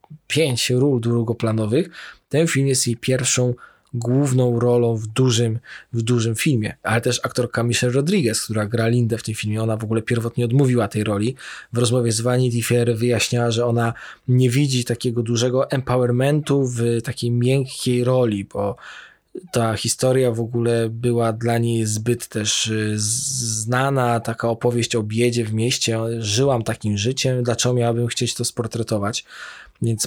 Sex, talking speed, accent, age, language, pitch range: male, 150 wpm, native, 20-39, Polish, 115-130 Hz